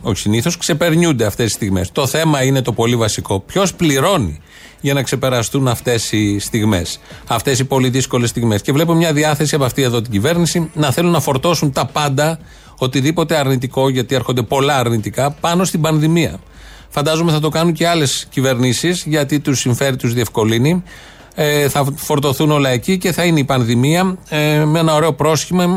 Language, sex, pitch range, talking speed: Greek, male, 125-165 Hz, 175 wpm